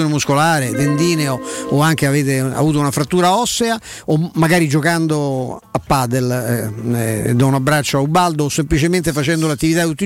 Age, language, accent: 50-69, Italian, native